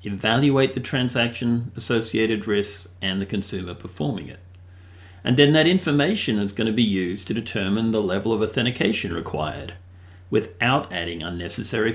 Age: 50-69